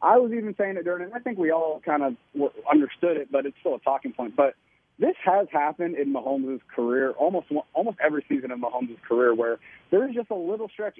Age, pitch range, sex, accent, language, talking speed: 30-49, 135-185 Hz, male, American, English, 235 wpm